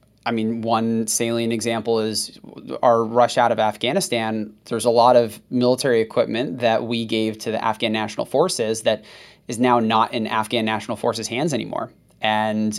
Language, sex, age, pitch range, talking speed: English, male, 20-39, 110-125 Hz, 170 wpm